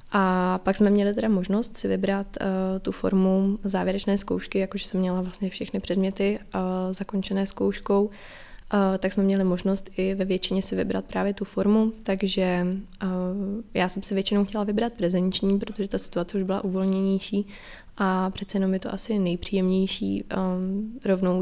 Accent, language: native, Czech